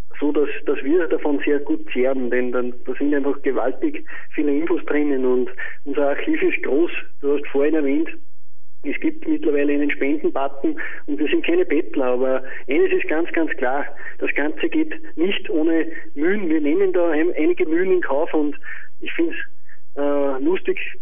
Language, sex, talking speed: German, male, 180 wpm